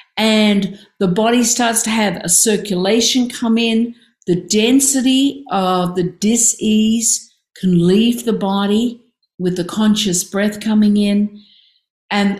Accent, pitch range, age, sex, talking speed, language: Australian, 185-225 Hz, 50-69, female, 125 wpm, English